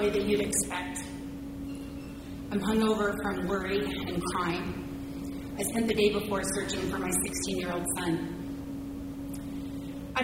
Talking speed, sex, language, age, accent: 130 wpm, female, English, 30-49, American